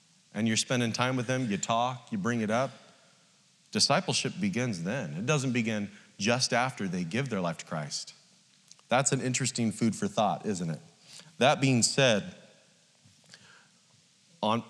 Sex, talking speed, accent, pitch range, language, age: male, 155 wpm, American, 120-185 Hz, English, 30-49